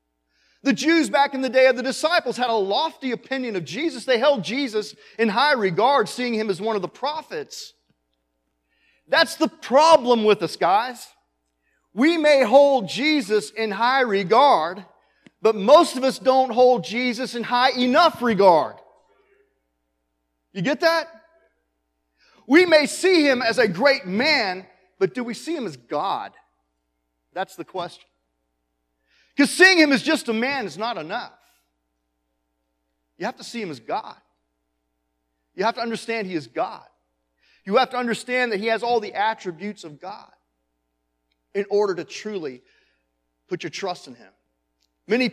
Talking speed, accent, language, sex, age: 160 wpm, American, English, male, 40-59